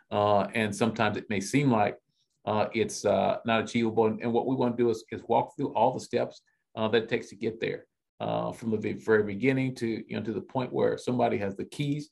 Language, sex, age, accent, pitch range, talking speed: English, male, 40-59, American, 105-120 Hz, 240 wpm